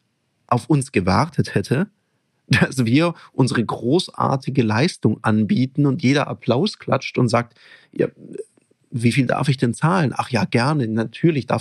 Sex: male